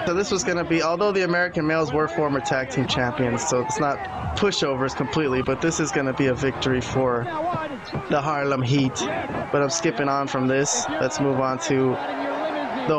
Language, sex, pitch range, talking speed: English, male, 135-175 Hz, 200 wpm